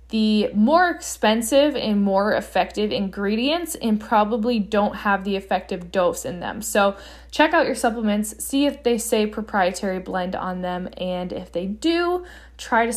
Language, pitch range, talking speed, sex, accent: English, 200-255 Hz, 160 wpm, female, American